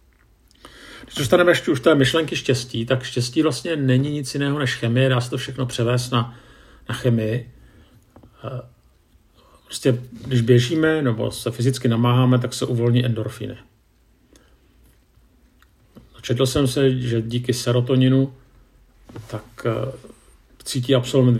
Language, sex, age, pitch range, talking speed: Czech, male, 50-69, 115-130 Hz, 120 wpm